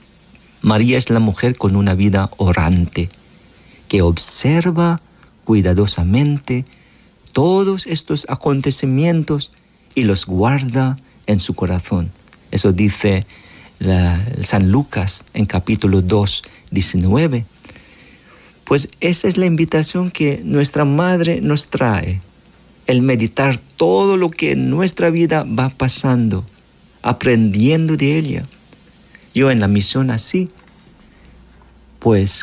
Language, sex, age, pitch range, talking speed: Spanish, male, 50-69, 100-140 Hz, 105 wpm